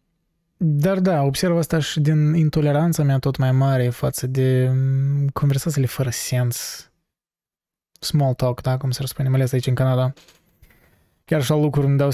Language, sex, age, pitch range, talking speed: Romanian, male, 20-39, 130-160 Hz, 165 wpm